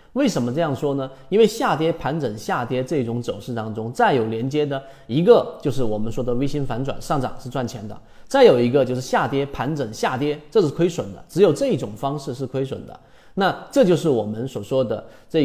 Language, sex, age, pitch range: Chinese, male, 30-49, 120-165 Hz